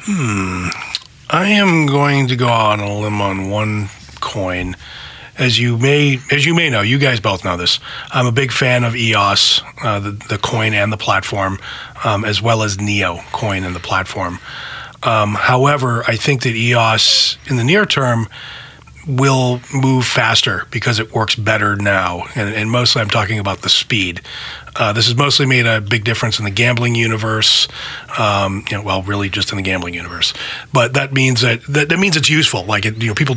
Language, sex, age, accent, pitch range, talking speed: English, male, 30-49, American, 100-125 Hz, 195 wpm